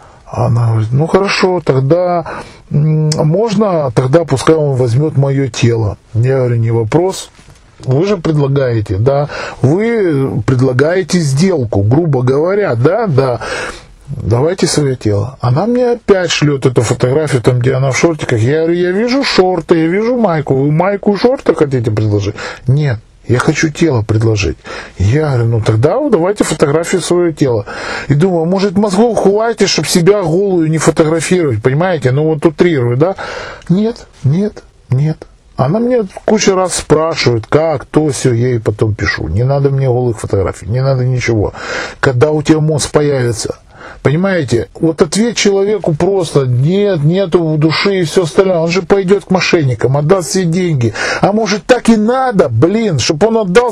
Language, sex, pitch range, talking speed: Russian, male, 130-195 Hz, 155 wpm